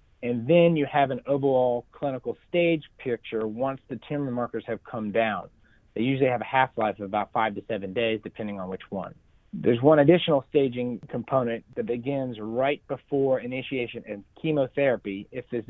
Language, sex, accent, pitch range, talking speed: English, male, American, 110-140 Hz, 170 wpm